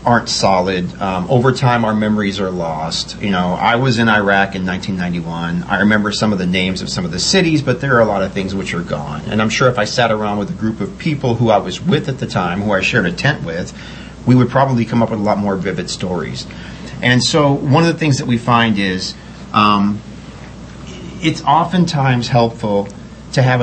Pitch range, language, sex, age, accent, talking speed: 100-125 Hz, English, male, 40-59, American, 230 wpm